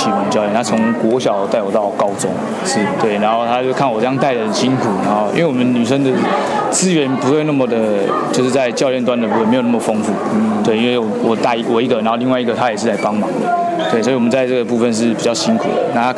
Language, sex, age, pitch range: Chinese, male, 20-39, 115-135 Hz